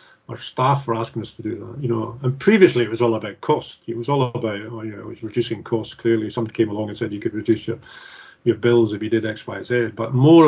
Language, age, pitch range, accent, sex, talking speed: English, 40-59, 110-120 Hz, British, male, 280 wpm